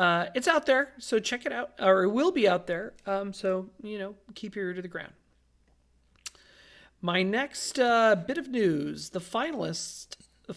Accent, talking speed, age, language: American, 180 wpm, 40-59, English